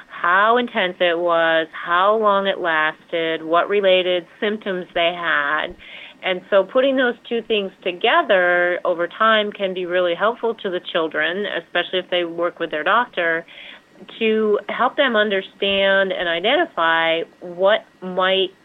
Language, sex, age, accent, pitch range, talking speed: English, female, 30-49, American, 165-195 Hz, 140 wpm